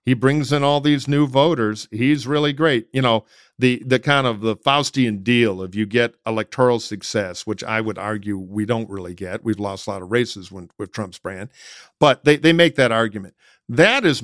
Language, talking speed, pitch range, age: English, 210 wpm, 115-140 Hz, 50-69